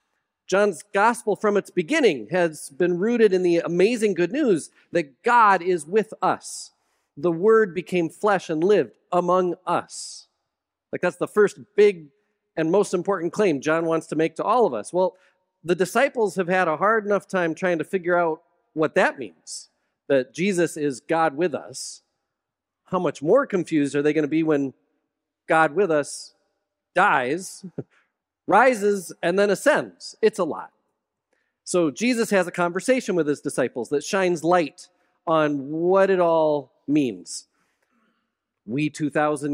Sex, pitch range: male, 155-205 Hz